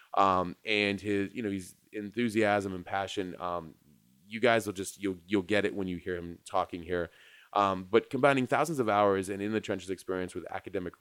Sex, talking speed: male, 195 wpm